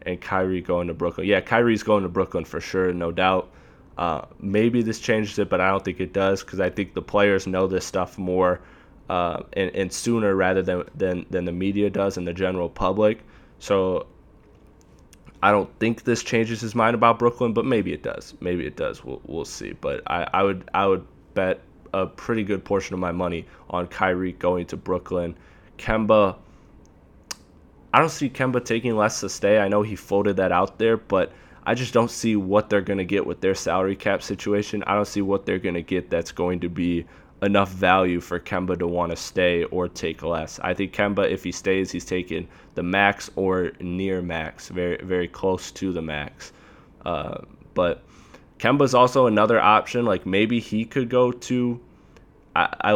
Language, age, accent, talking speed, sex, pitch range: English, 20-39, American, 195 wpm, male, 90-110 Hz